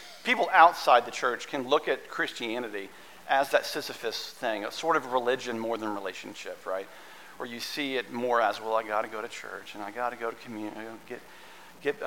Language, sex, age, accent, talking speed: English, male, 40-59, American, 200 wpm